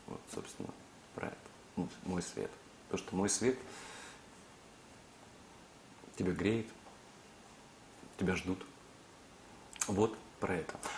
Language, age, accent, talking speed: Russian, 30-49, native, 95 wpm